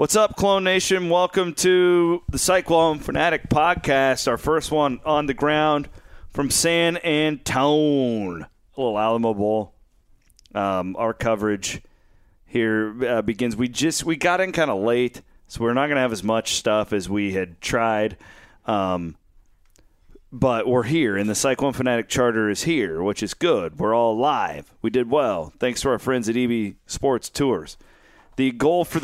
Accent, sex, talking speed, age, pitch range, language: American, male, 165 wpm, 30-49, 105-150 Hz, English